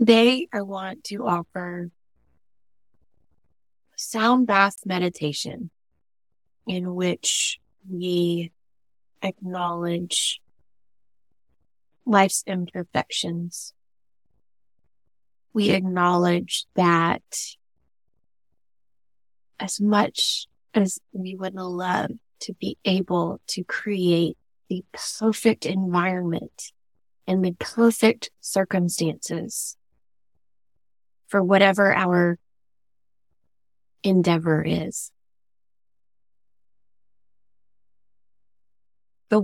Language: English